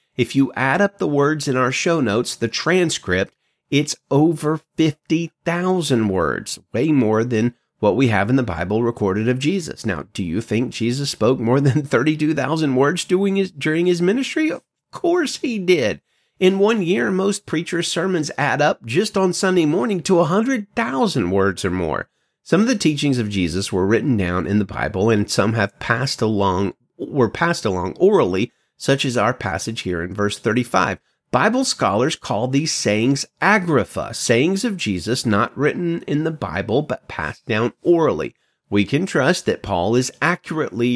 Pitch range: 115-175 Hz